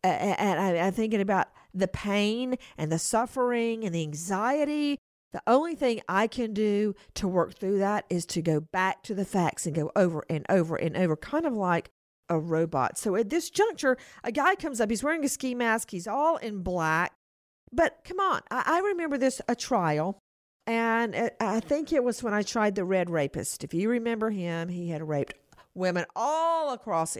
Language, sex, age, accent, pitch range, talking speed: English, female, 50-69, American, 160-235 Hz, 190 wpm